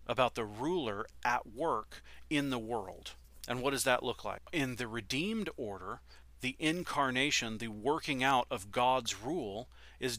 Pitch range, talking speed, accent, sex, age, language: 105-130 Hz, 160 wpm, American, male, 40-59, English